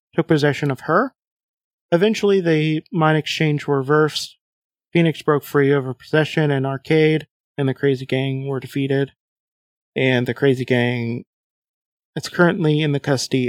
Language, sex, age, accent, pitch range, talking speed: English, male, 30-49, American, 140-165 Hz, 145 wpm